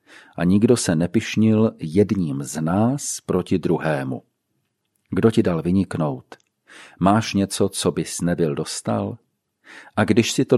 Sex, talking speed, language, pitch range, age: male, 130 wpm, Czech, 90-120 Hz, 40-59